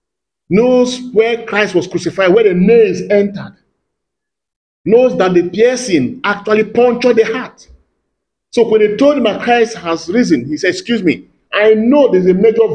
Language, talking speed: English, 165 wpm